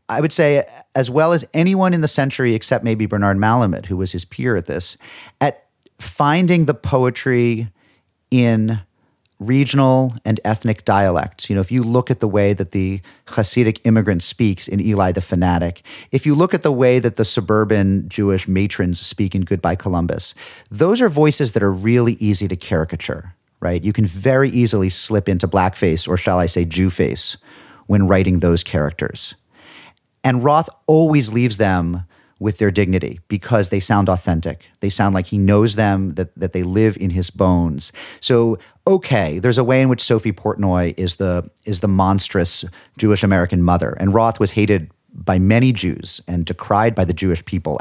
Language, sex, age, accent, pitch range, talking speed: English, male, 40-59, American, 90-120 Hz, 180 wpm